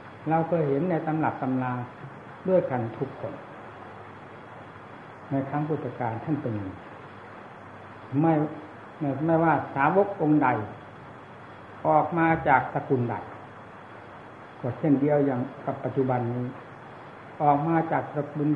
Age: 60-79